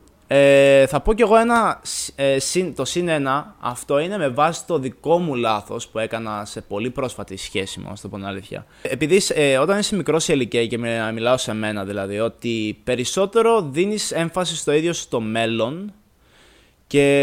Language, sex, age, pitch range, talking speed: Greek, male, 20-39, 110-165 Hz, 165 wpm